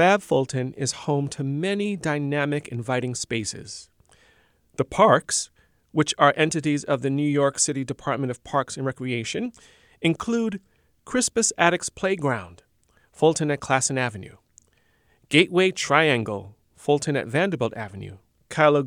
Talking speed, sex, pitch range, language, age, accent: 125 wpm, male, 130-170 Hz, English, 40-59, American